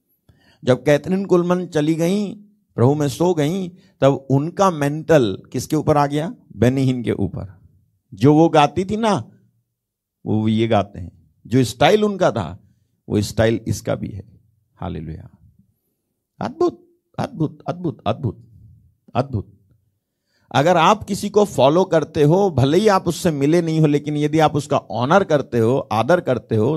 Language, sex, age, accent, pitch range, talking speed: Hindi, male, 50-69, native, 110-155 Hz, 150 wpm